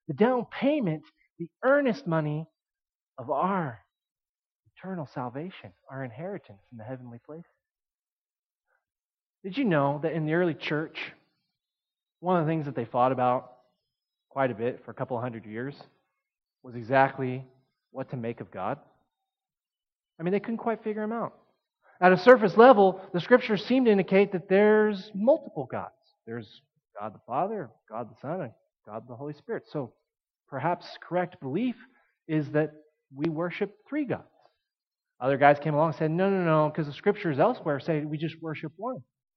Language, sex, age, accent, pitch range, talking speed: English, male, 30-49, American, 150-230 Hz, 165 wpm